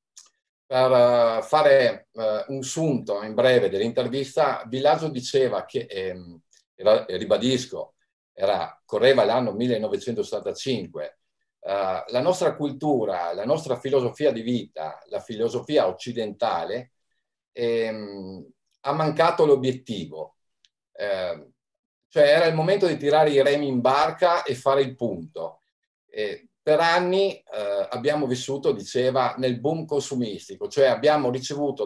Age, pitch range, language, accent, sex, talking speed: 50-69, 120-155 Hz, Italian, native, male, 115 wpm